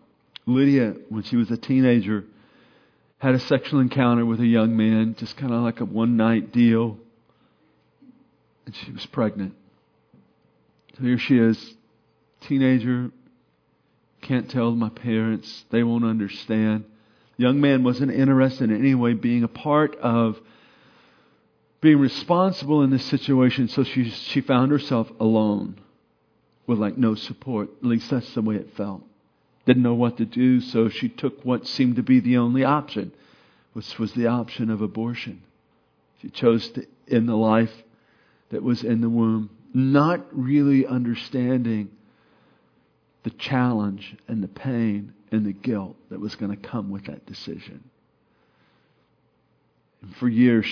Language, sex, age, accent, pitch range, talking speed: English, male, 50-69, American, 110-125 Hz, 145 wpm